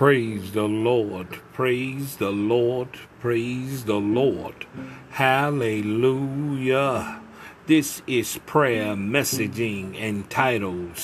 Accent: American